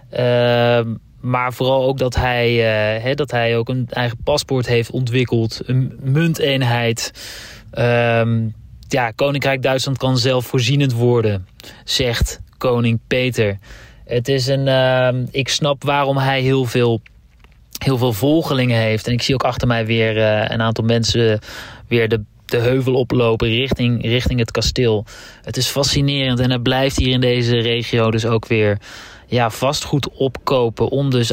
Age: 20-39